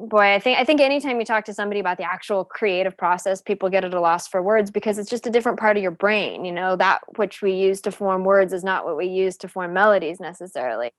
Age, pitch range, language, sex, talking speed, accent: 20-39, 190-235 Hz, English, female, 275 wpm, American